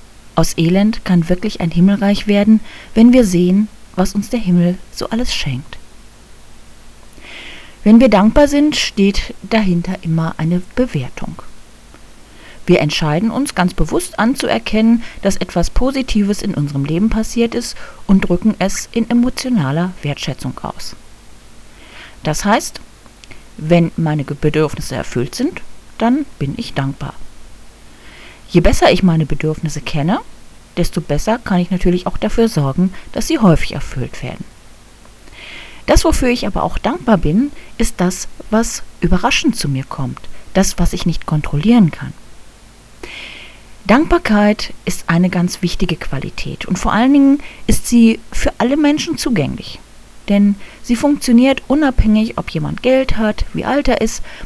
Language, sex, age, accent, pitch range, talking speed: German, female, 40-59, German, 165-235 Hz, 140 wpm